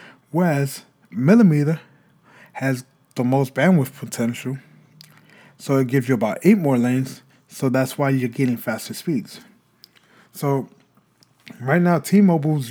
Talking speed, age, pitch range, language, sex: 125 wpm, 20-39, 125-150 Hz, English, male